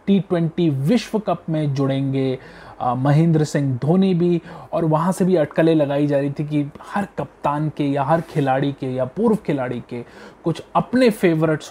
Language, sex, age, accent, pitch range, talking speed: Hindi, male, 30-49, native, 135-170 Hz, 175 wpm